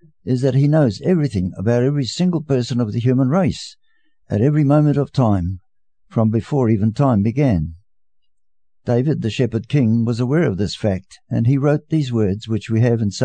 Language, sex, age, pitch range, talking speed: English, male, 60-79, 105-140 Hz, 190 wpm